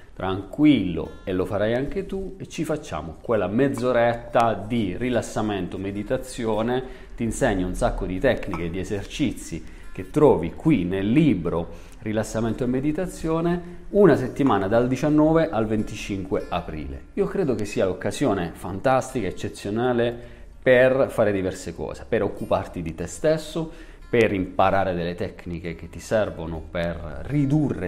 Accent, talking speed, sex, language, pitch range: native, 135 wpm, male, Italian, 90-135 Hz